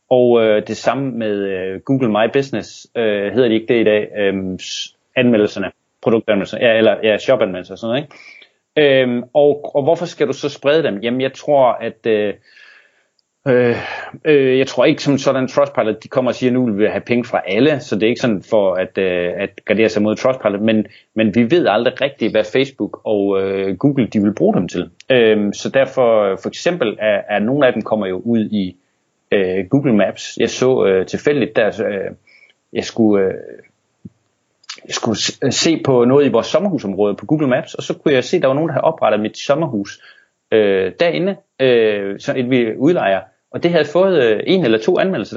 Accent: native